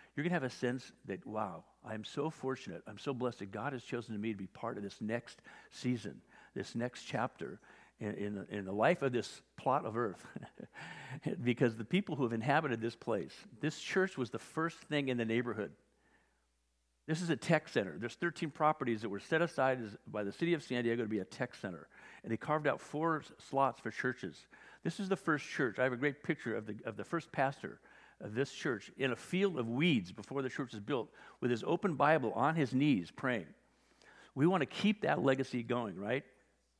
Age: 50-69